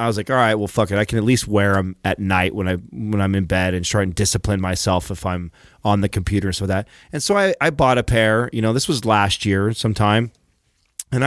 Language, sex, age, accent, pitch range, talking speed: English, male, 30-49, American, 105-145 Hz, 265 wpm